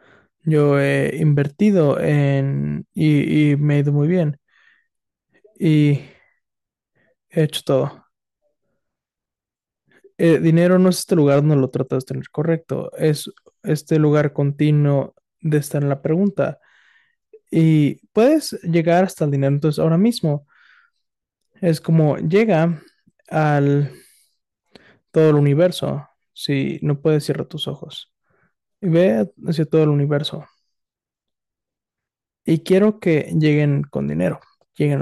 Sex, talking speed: male, 125 wpm